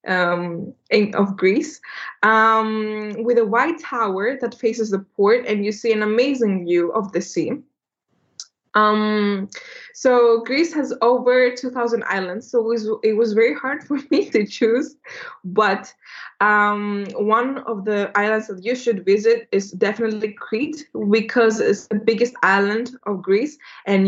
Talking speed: 150 wpm